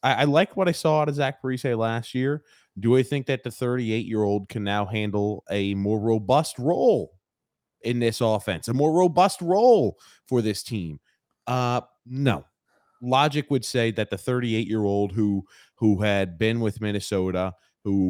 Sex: male